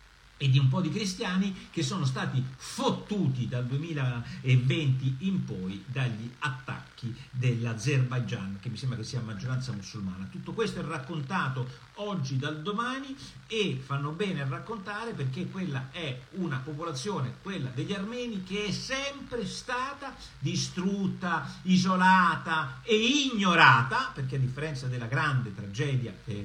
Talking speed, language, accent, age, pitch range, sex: 130 wpm, Italian, native, 50-69, 120-160 Hz, male